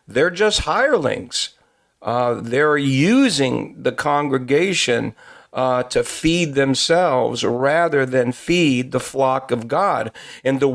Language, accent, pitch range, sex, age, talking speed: English, American, 125-150 Hz, male, 50-69, 115 wpm